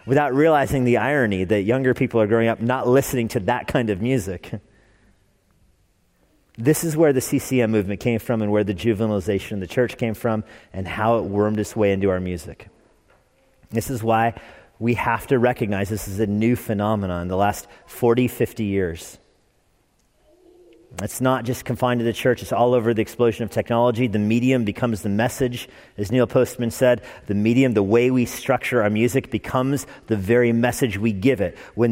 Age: 40-59